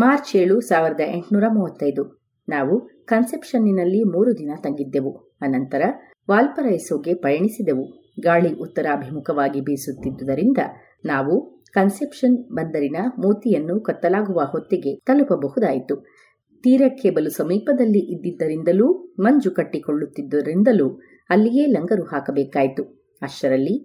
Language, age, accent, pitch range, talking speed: Kannada, 30-49, native, 145-215 Hz, 85 wpm